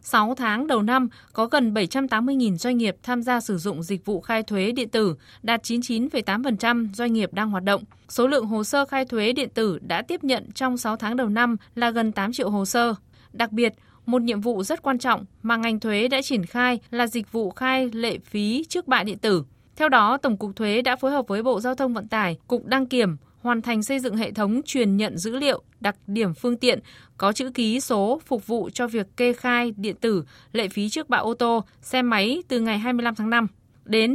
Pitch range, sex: 210-255 Hz, female